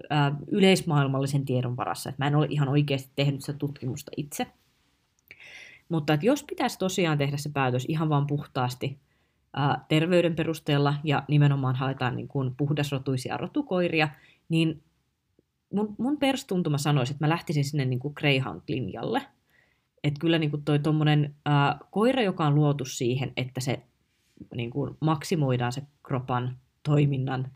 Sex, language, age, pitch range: female, Finnish, 20-39, 135-165 Hz